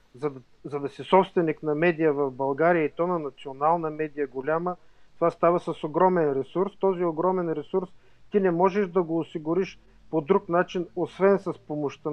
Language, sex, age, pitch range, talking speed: English, male, 40-59, 150-185 Hz, 180 wpm